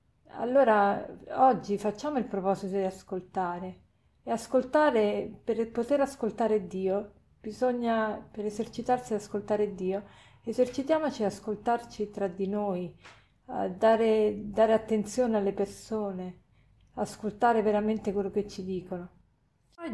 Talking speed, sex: 115 wpm, female